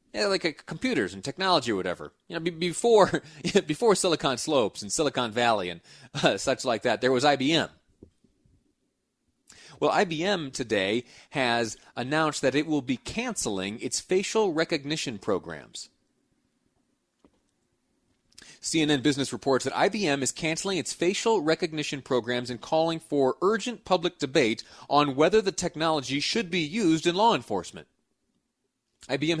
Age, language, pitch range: 30-49, English, 120-165 Hz